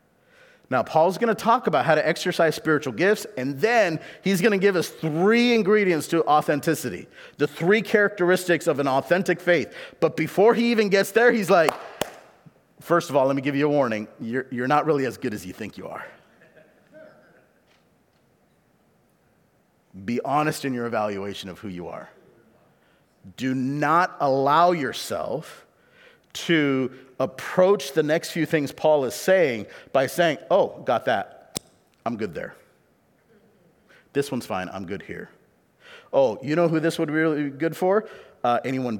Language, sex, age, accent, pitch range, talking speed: English, male, 40-59, American, 130-190 Hz, 165 wpm